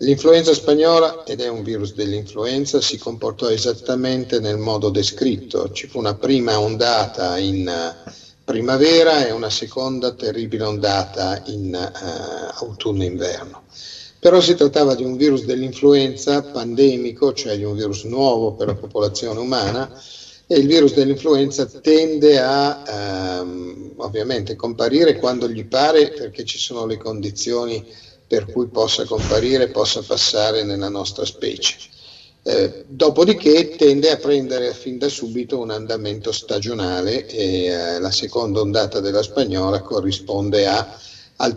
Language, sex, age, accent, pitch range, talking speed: Italian, male, 50-69, native, 105-135 Hz, 130 wpm